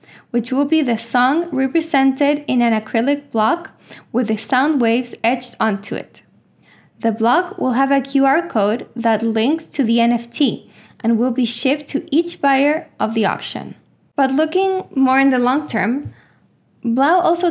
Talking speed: 165 wpm